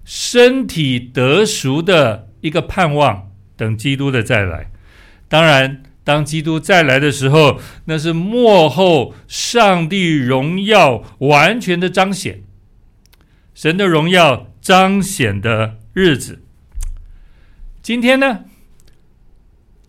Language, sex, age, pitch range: Chinese, male, 60-79, 100-165 Hz